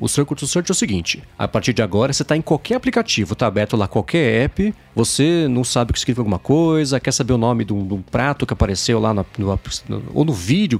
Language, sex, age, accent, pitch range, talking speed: Portuguese, male, 40-59, Brazilian, 105-145 Hz, 250 wpm